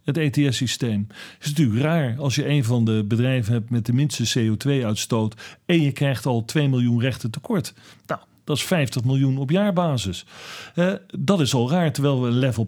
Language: Dutch